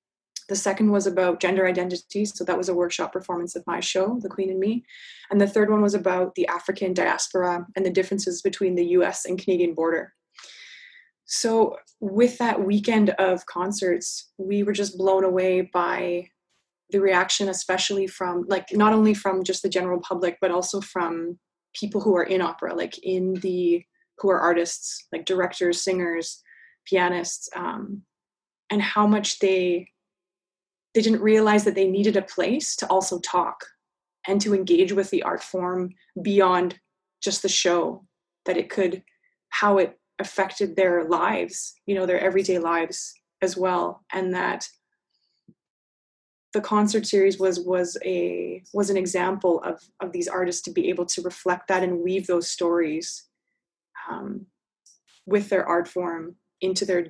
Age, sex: 20-39, female